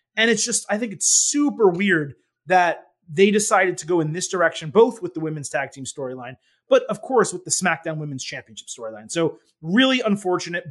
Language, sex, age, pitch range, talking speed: English, male, 30-49, 155-200 Hz, 195 wpm